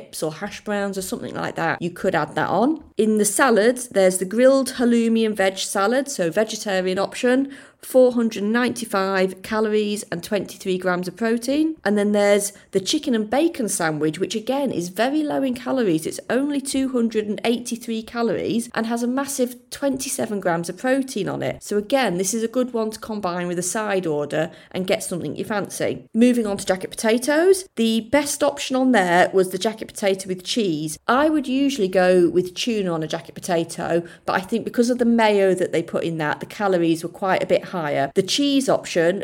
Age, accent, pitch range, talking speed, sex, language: 30-49, British, 185-240 Hz, 195 wpm, female, English